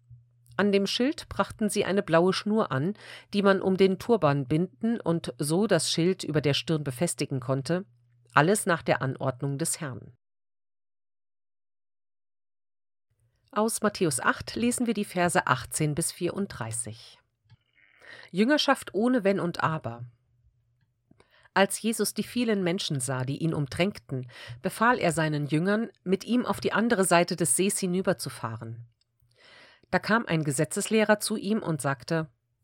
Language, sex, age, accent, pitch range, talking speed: German, female, 40-59, German, 125-195 Hz, 140 wpm